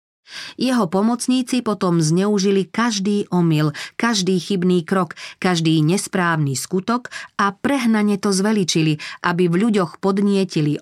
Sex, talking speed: female, 110 wpm